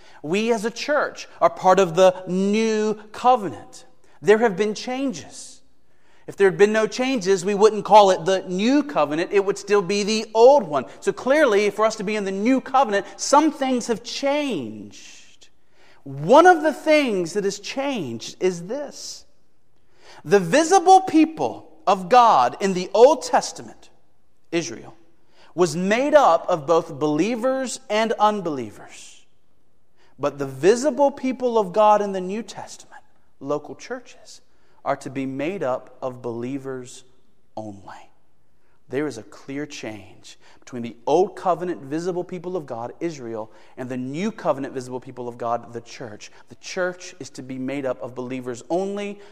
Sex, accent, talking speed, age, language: male, American, 155 wpm, 40-59, English